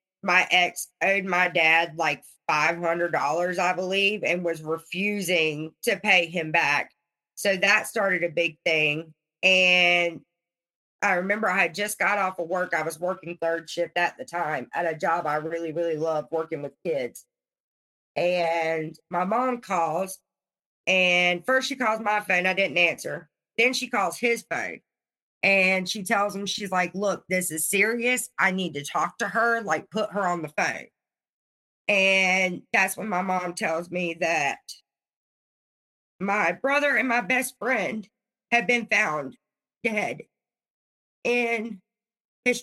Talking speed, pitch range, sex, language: 155 wpm, 170-215 Hz, female, English